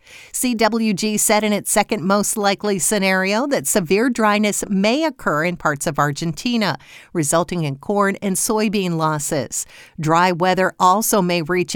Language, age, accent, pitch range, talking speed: English, 50-69, American, 170-210 Hz, 145 wpm